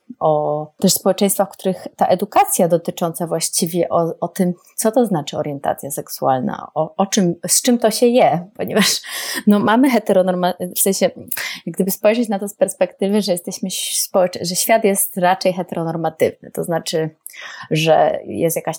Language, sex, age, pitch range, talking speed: Polish, female, 30-49, 165-200 Hz, 165 wpm